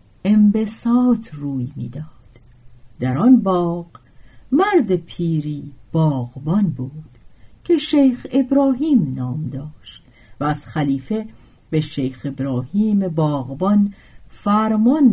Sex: female